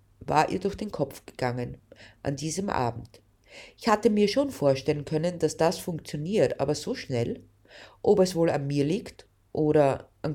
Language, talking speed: German, 170 wpm